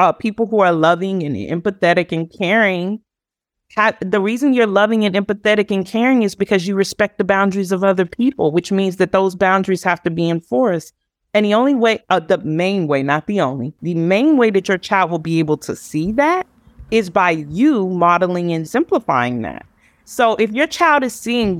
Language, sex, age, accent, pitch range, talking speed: English, female, 30-49, American, 170-225 Hz, 195 wpm